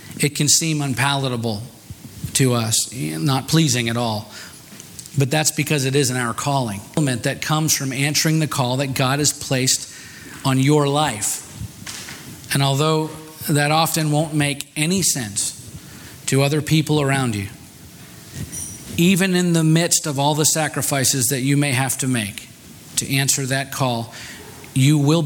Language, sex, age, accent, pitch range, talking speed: English, male, 40-59, American, 115-145 Hz, 150 wpm